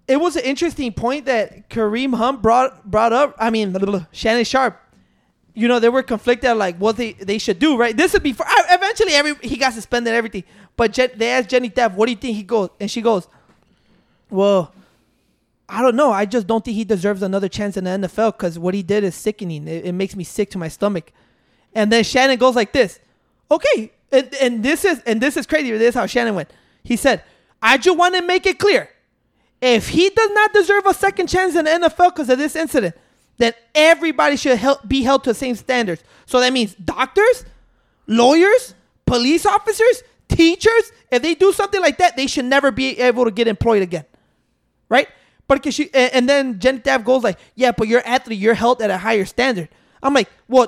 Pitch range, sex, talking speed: 220-295 Hz, male, 220 wpm